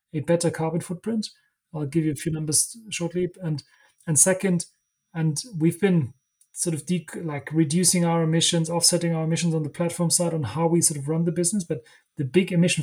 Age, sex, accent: 30-49, male, German